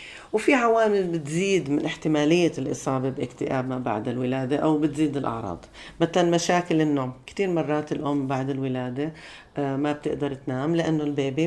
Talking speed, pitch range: 135 wpm, 135-165 Hz